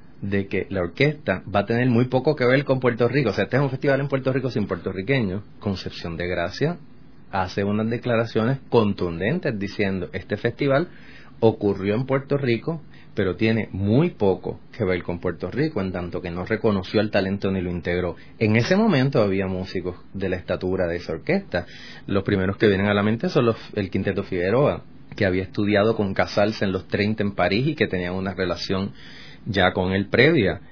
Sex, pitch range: male, 95-130 Hz